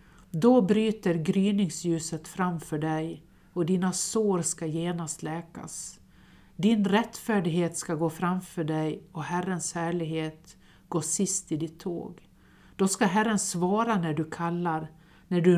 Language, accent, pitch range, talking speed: Swedish, native, 165-200 Hz, 130 wpm